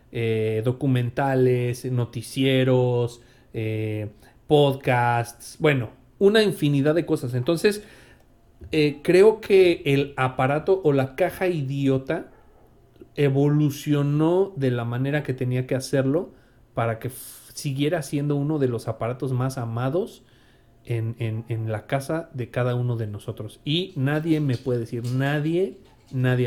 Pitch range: 120-150 Hz